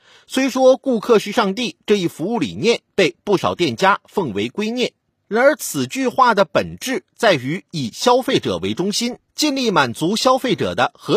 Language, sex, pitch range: Chinese, male, 190-255 Hz